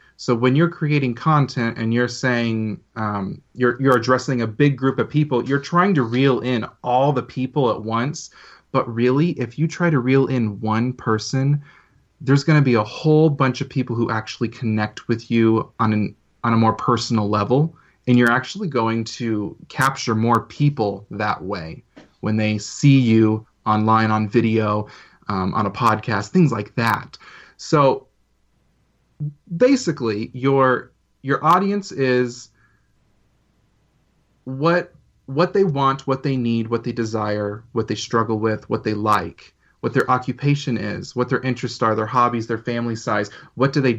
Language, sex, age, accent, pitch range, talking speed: English, male, 30-49, American, 110-135 Hz, 165 wpm